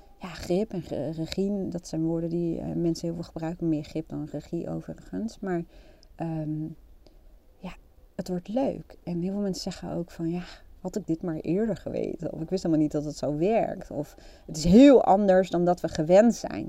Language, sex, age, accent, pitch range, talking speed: Dutch, female, 40-59, Dutch, 155-185 Hz, 200 wpm